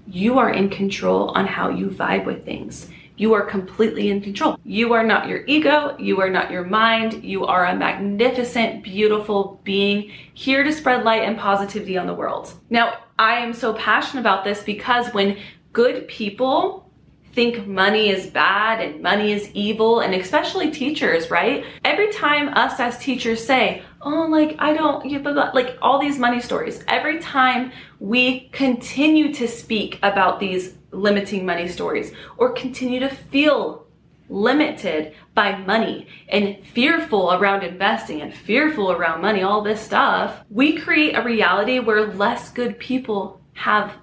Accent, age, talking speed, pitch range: American, 30-49, 160 wpm, 195-255 Hz